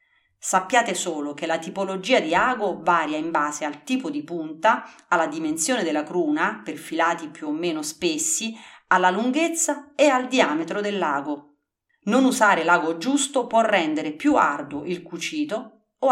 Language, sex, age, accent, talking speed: Italian, female, 40-59, native, 155 wpm